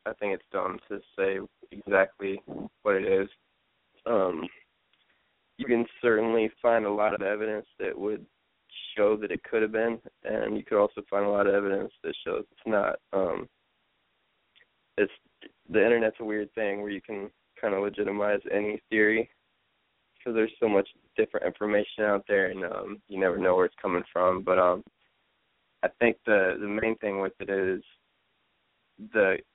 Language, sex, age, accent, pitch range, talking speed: English, male, 20-39, American, 100-110 Hz, 170 wpm